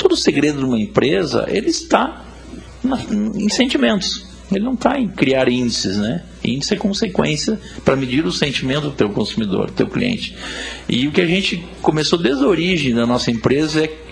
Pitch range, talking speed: 120-185 Hz, 185 wpm